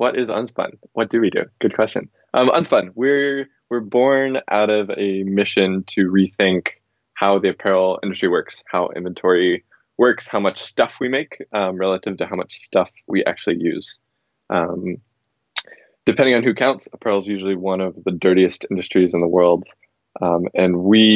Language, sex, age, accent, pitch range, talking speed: English, male, 20-39, American, 90-105 Hz, 175 wpm